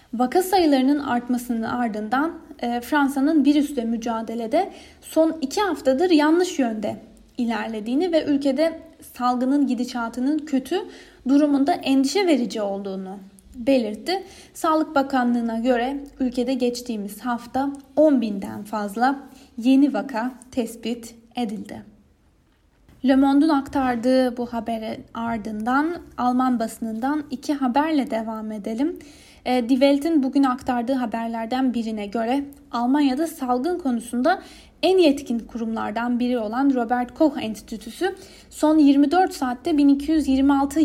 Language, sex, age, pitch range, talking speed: Turkish, female, 10-29, 235-300 Hz, 100 wpm